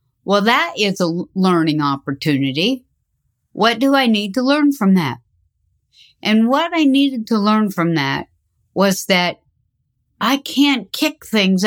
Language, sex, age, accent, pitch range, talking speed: English, female, 60-79, American, 170-245 Hz, 145 wpm